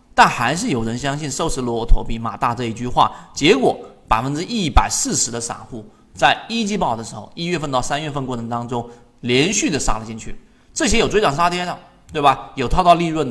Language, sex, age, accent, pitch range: Chinese, male, 30-49, native, 120-175 Hz